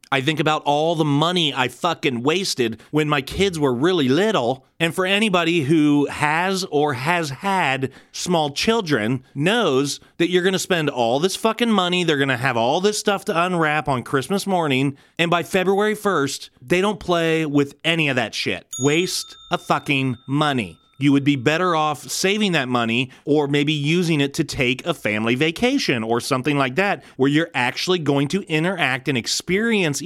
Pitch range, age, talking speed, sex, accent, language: 130-175 Hz, 30-49, 185 wpm, male, American, English